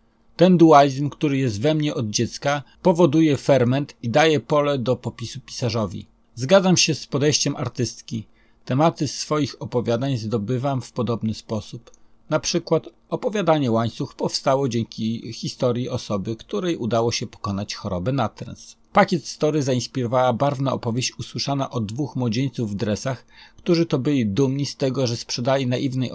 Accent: native